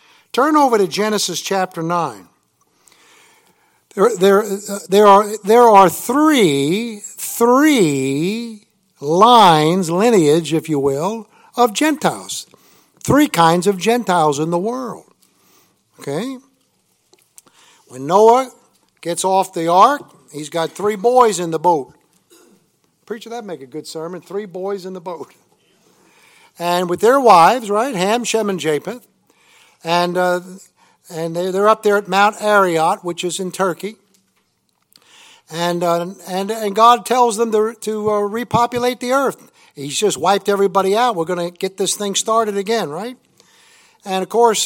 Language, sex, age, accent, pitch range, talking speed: English, male, 60-79, American, 180-230 Hz, 145 wpm